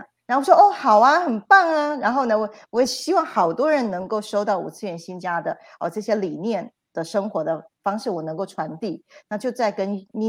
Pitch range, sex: 180-235 Hz, female